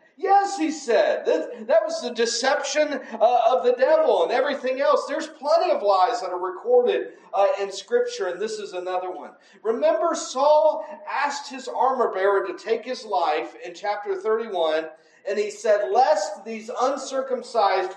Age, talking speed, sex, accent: 40-59, 165 wpm, male, American